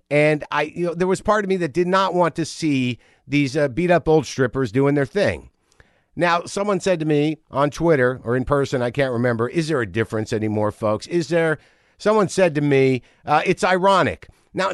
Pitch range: 135-170 Hz